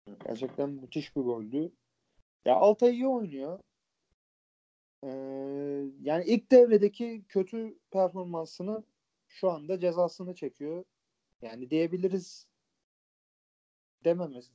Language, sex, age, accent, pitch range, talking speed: Turkish, male, 40-59, native, 130-180 Hz, 85 wpm